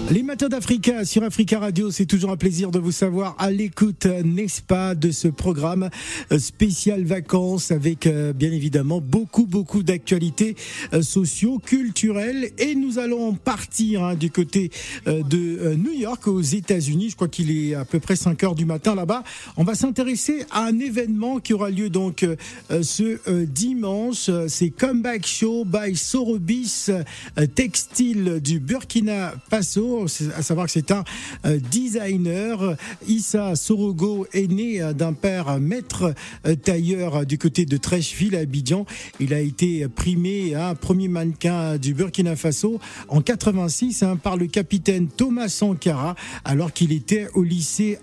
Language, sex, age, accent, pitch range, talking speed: French, male, 50-69, French, 165-215 Hz, 155 wpm